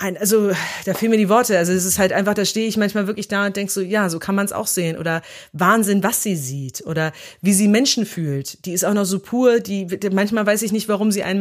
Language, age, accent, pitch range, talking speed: German, 30-49, German, 170-205 Hz, 275 wpm